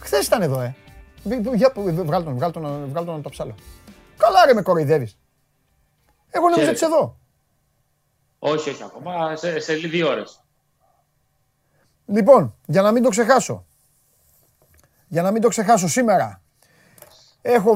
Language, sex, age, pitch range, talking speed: Greek, male, 30-49, 150-240 Hz, 120 wpm